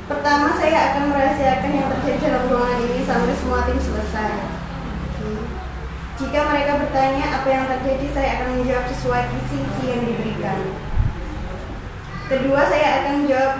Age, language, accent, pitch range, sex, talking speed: 20-39, English, Indonesian, 235-285 Hz, female, 130 wpm